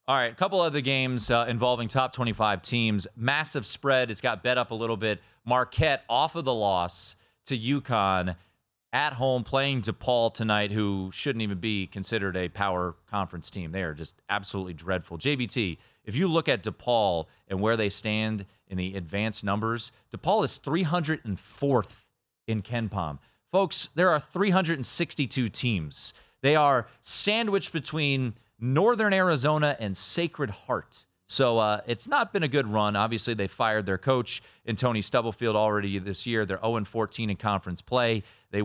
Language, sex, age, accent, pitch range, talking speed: English, male, 30-49, American, 100-135 Hz, 165 wpm